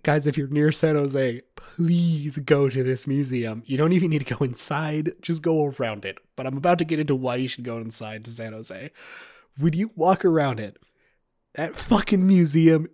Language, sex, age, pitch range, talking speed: English, male, 30-49, 125-165 Hz, 205 wpm